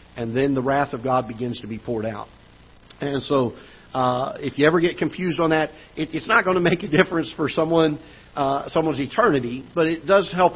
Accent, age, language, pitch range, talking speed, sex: American, 50-69, English, 120-145 Hz, 205 wpm, male